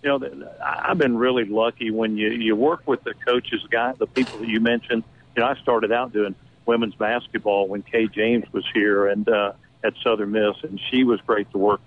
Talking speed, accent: 220 wpm, American